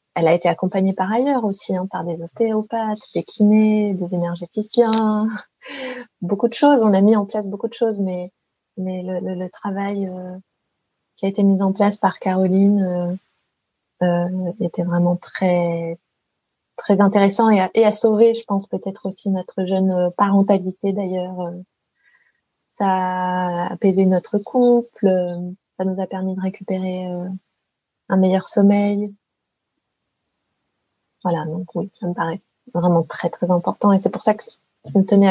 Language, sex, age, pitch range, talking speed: French, female, 20-39, 185-210 Hz, 160 wpm